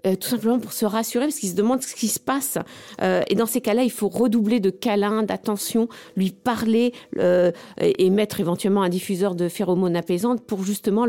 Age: 50-69